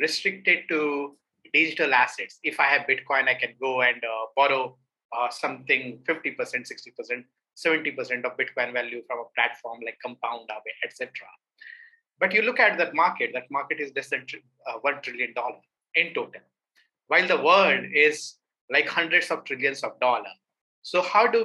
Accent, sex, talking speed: Indian, male, 160 wpm